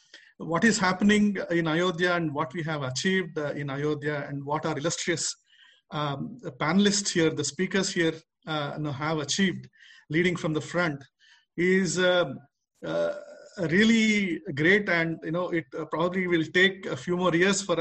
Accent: Indian